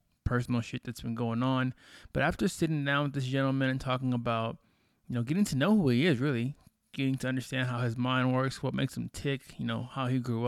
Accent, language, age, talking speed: American, English, 20-39, 235 wpm